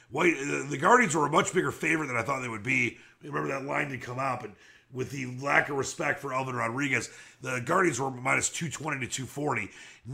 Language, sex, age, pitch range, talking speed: English, male, 40-59, 125-155 Hz, 220 wpm